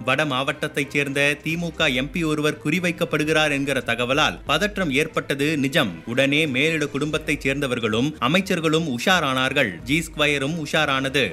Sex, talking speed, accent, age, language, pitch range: male, 110 wpm, native, 30-49, Tamil, 140-165 Hz